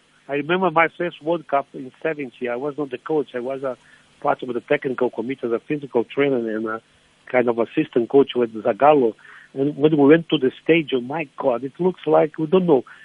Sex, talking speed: male, 220 wpm